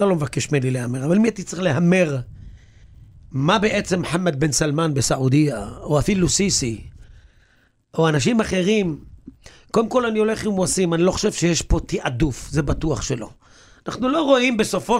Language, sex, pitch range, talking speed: Hebrew, male, 160-220 Hz, 165 wpm